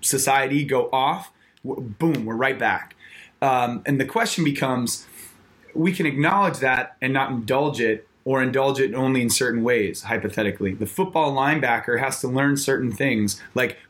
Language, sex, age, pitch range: English, male, 20-39, 125-160 Hz